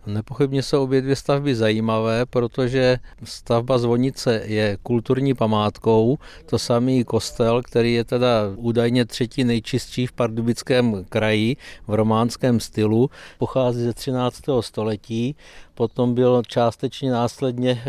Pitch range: 110-125 Hz